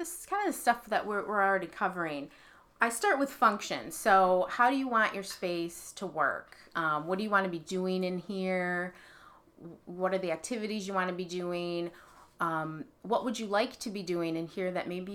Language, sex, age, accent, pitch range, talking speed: English, female, 30-49, American, 170-215 Hz, 210 wpm